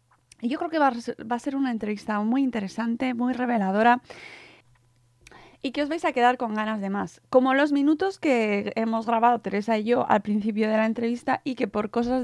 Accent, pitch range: Spanish, 200-245 Hz